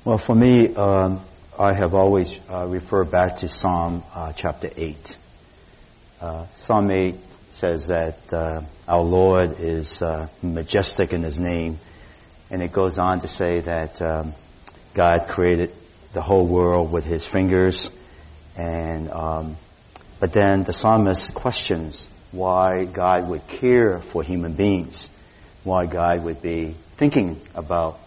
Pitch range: 80-95 Hz